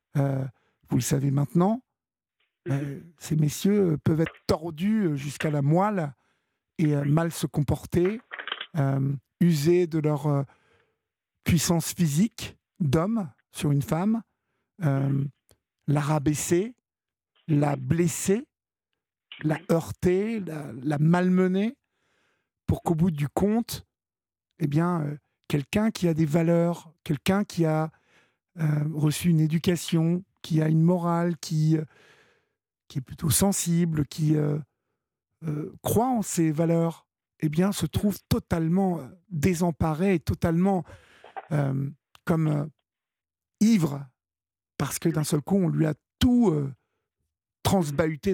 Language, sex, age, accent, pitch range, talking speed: French, male, 50-69, French, 145-180 Hz, 120 wpm